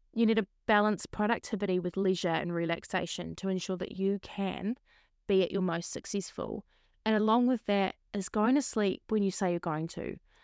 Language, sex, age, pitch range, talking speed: English, female, 20-39, 195-230 Hz, 190 wpm